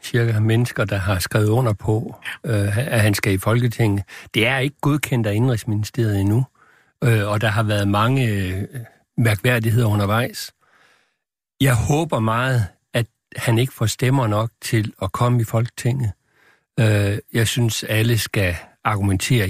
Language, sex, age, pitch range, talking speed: Danish, male, 60-79, 105-130 Hz, 140 wpm